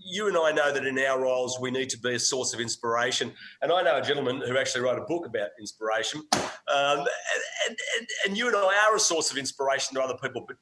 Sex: male